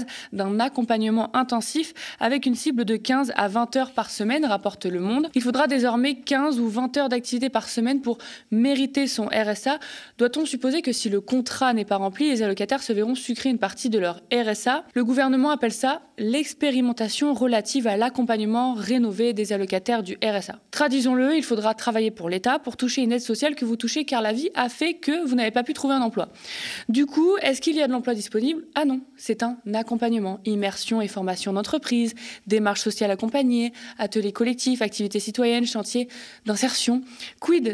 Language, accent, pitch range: French, French, 215-265 Hz